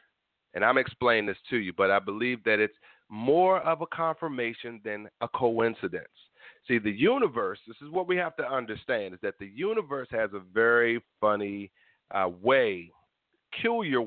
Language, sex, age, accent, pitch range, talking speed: English, male, 40-59, American, 110-145 Hz, 165 wpm